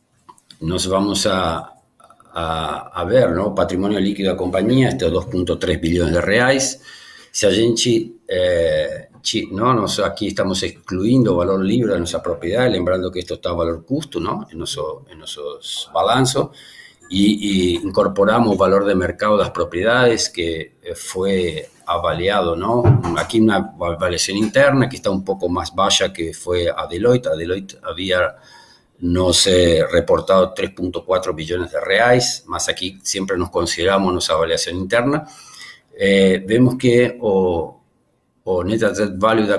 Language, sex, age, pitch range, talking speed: Portuguese, male, 50-69, 90-125 Hz, 150 wpm